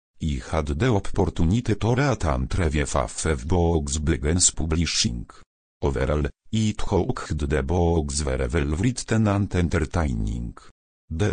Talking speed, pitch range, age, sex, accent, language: 120 wpm, 75-105 Hz, 50-69, male, Polish, English